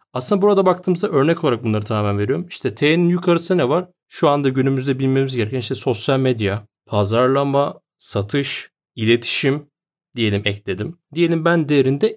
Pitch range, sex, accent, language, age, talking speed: 120-165 Hz, male, native, Turkish, 30-49, 145 wpm